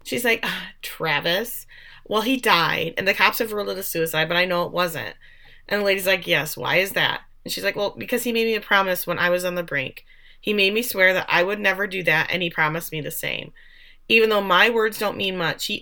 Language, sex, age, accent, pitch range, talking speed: English, female, 30-49, American, 170-230 Hz, 260 wpm